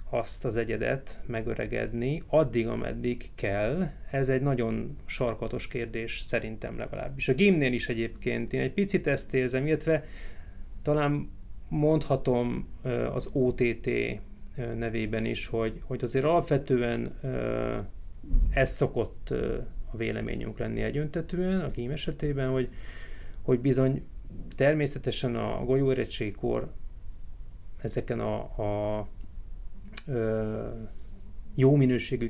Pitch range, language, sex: 105-130 Hz, Hungarian, male